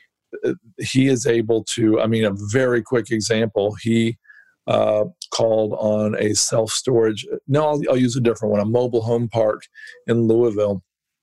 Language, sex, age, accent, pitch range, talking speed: English, male, 50-69, American, 110-125 Hz, 155 wpm